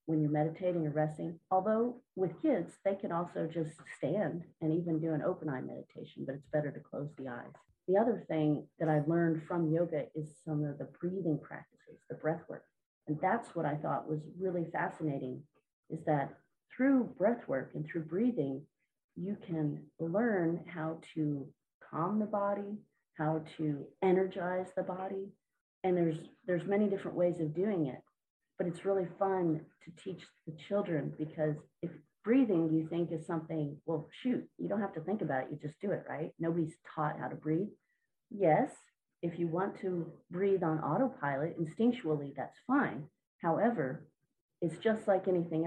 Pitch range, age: 155-185 Hz, 40-59